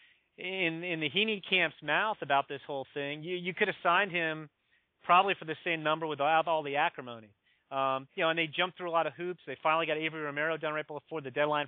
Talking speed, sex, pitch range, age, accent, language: 245 wpm, male, 150-190 Hz, 30-49, American, English